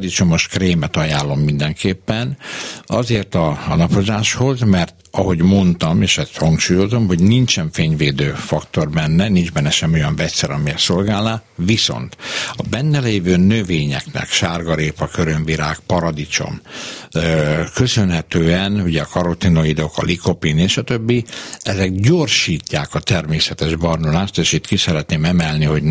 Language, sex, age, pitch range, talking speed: Hungarian, male, 60-79, 80-105 Hz, 125 wpm